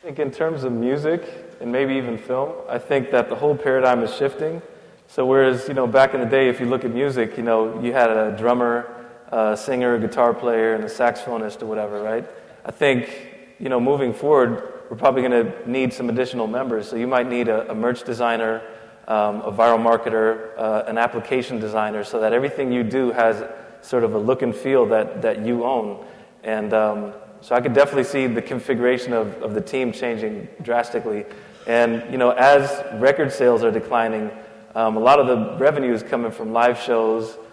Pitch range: 110-125 Hz